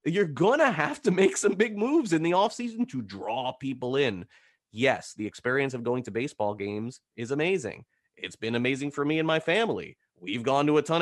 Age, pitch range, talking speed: 30-49, 110-175 Hz, 220 wpm